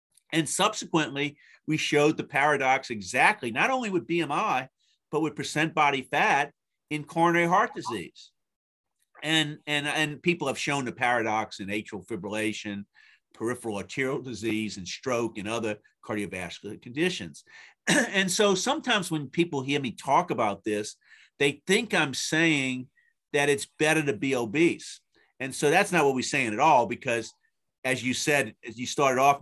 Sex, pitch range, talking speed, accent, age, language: male, 120-170 Hz, 155 wpm, American, 50-69, English